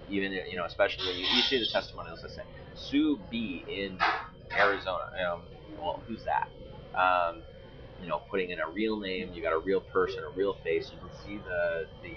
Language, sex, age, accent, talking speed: English, male, 30-49, American, 205 wpm